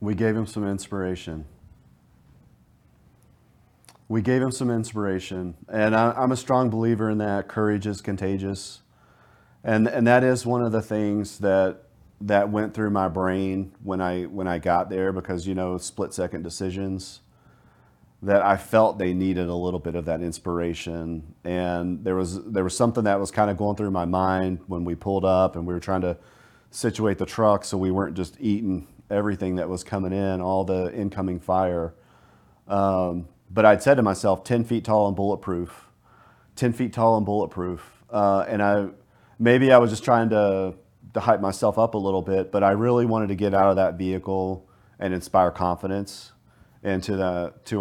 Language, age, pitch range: English, 40-59, 90-105 Hz